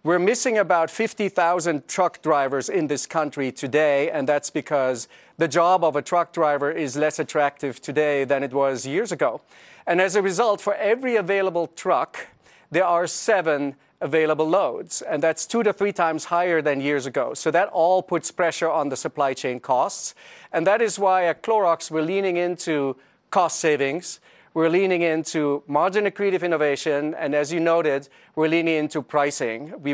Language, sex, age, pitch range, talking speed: English, male, 40-59, 150-180 Hz, 175 wpm